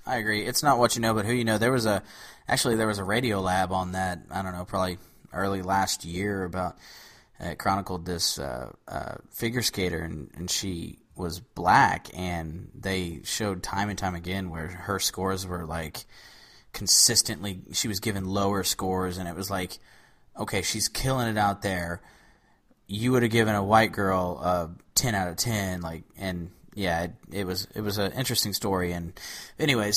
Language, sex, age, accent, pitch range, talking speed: English, male, 20-39, American, 90-105 Hz, 190 wpm